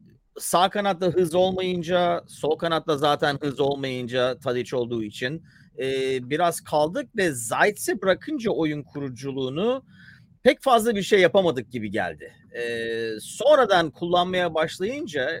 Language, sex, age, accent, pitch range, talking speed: Turkish, male, 40-59, native, 125-180 Hz, 120 wpm